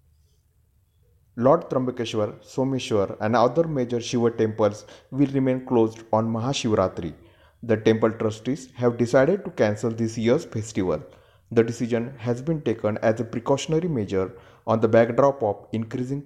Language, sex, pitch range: Marathi, male, 105-125 Hz